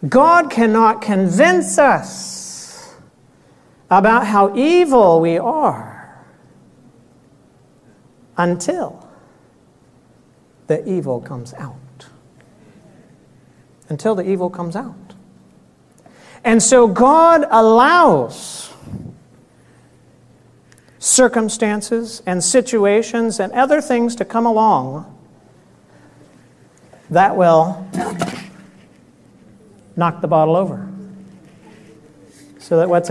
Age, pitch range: 50-69, 155-225 Hz